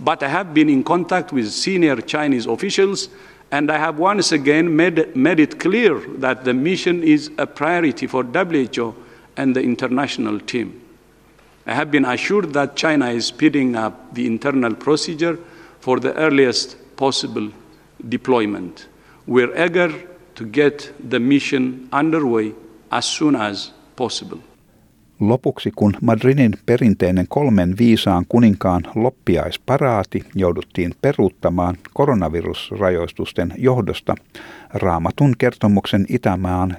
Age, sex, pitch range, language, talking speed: 60-79, male, 105-145 Hz, Finnish, 120 wpm